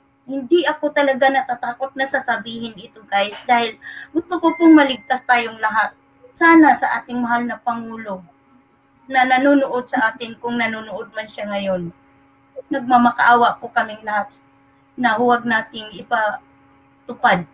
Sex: female